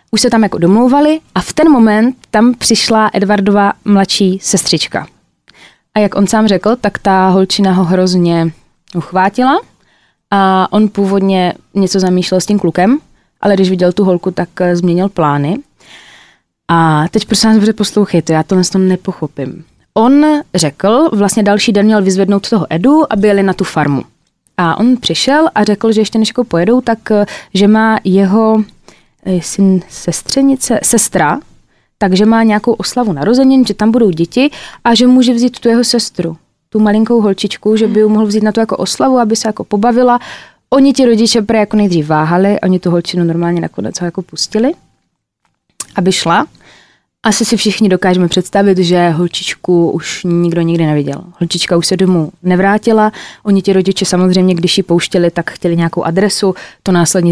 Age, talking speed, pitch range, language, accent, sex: 20-39, 165 wpm, 180-220 Hz, Czech, native, female